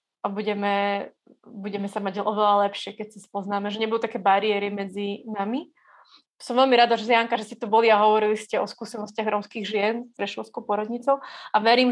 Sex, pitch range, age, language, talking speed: female, 210-250 Hz, 30-49, Slovak, 190 wpm